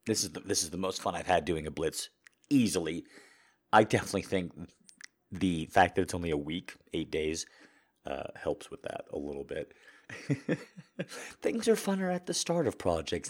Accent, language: American, English